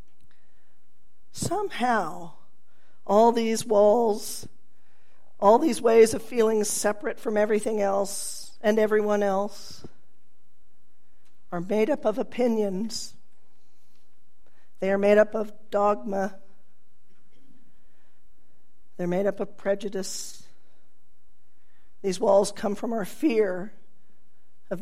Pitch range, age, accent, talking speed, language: 200-235 Hz, 50-69, American, 95 wpm, English